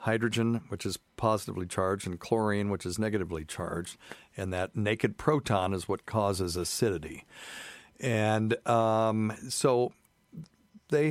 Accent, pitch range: American, 90-115 Hz